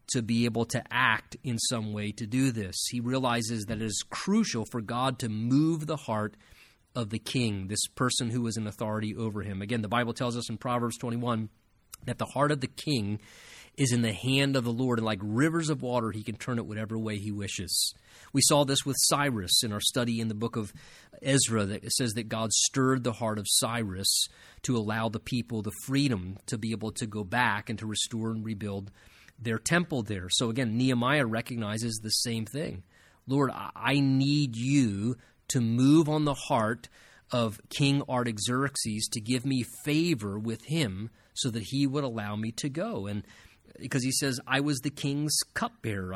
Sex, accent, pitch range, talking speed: male, American, 110-140 Hz, 200 wpm